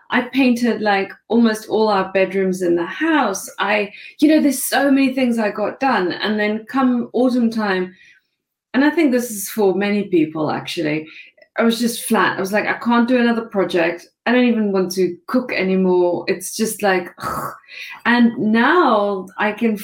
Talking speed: 180 wpm